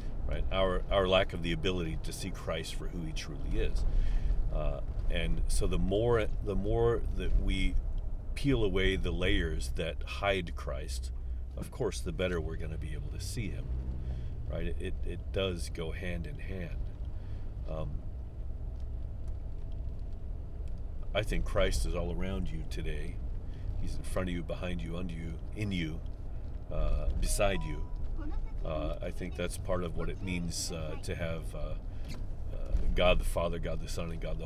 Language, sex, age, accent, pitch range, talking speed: English, male, 40-59, American, 80-95 Hz, 165 wpm